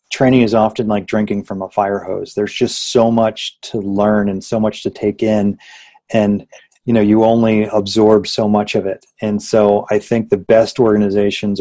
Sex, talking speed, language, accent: male, 195 wpm, English, American